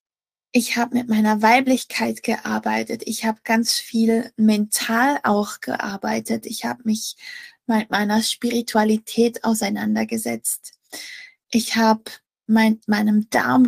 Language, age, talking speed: German, 20-39, 115 wpm